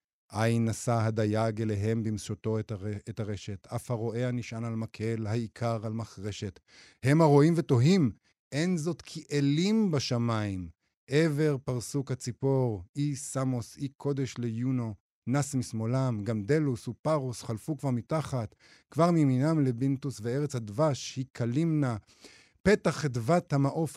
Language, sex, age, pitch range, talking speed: Hebrew, male, 50-69, 115-145 Hz, 130 wpm